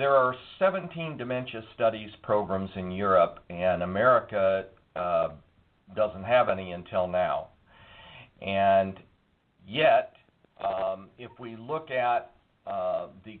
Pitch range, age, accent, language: 95-130 Hz, 50-69, American, English